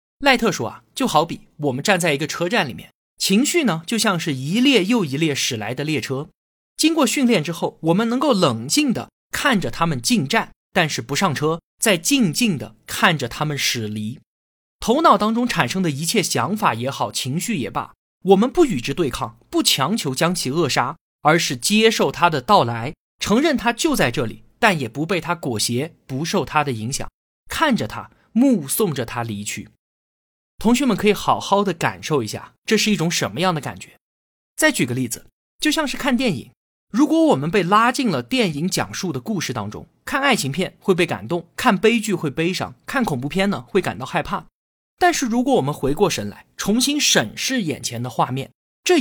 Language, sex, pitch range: Chinese, male, 140-230 Hz